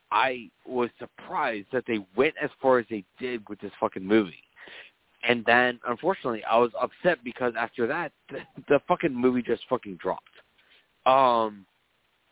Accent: American